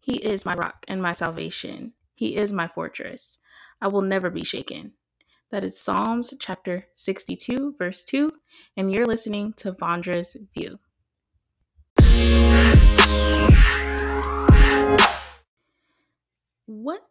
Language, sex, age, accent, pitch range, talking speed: English, female, 20-39, American, 160-220 Hz, 105 wpm